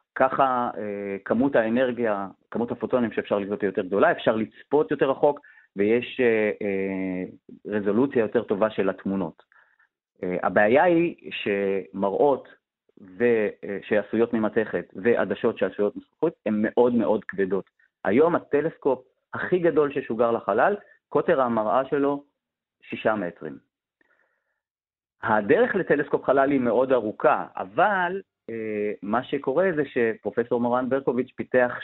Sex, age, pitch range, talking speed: male, 30-49, 110-145 Hz, 105 wpm